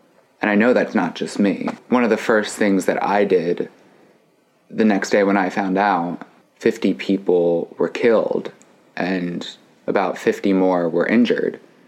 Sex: male